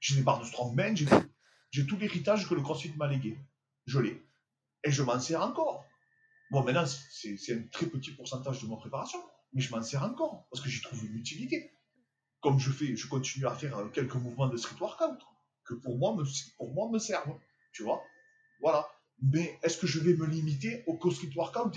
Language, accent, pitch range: French, French, 135-185 Hz